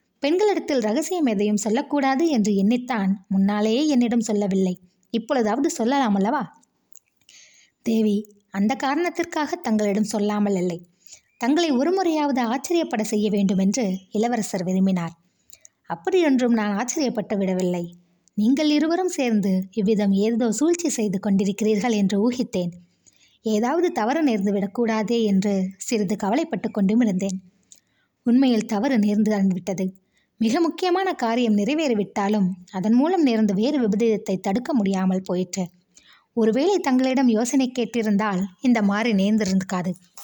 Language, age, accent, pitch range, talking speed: Tamil, 20-39, native, 195-255 Hz, 105 wpm